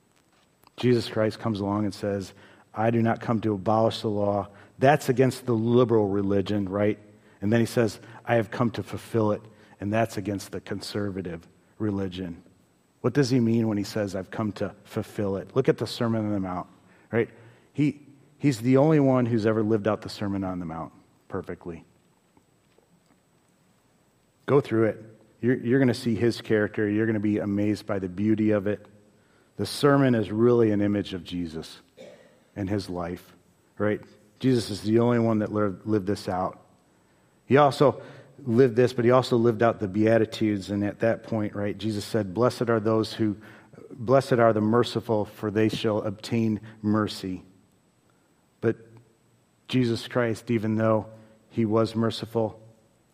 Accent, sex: American, male